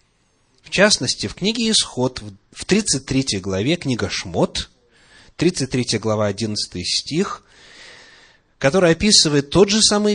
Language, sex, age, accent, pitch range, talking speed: Russian, male, 30-49, native, 110-170 Hz, 110 wpm